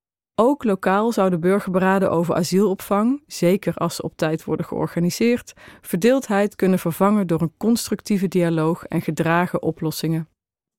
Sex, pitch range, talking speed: female, 170-205 Hz, 130 wpm